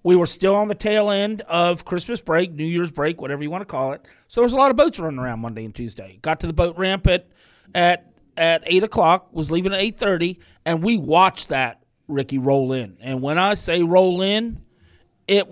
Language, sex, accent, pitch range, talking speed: English, male, American, 145-185 Hz, 230 wpm